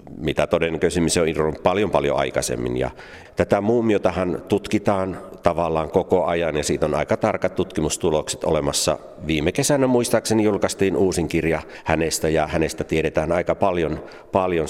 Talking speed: 140 wpm